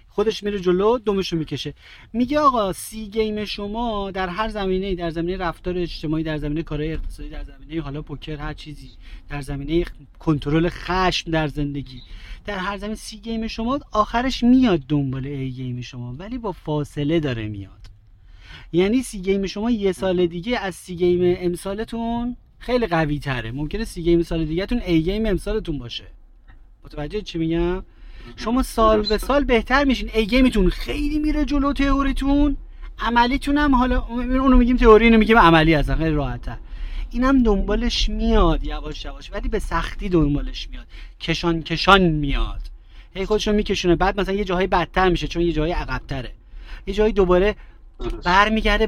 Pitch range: 150-215 Hz